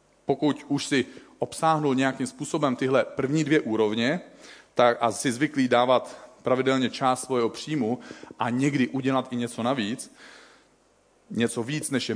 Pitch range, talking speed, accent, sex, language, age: 115-135 Hz, 145 wpm, native, male, Czech, 40-59